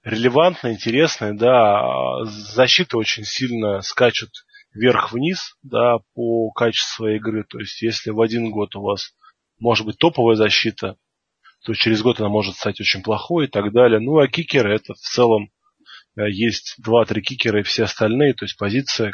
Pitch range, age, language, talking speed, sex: 110-135 Hz, 20-39, Russian, 155 wpm, male